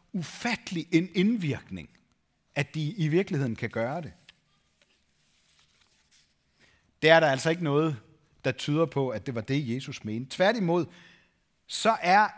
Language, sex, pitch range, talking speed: Danish, male, 135-195 Hz, 135 wpm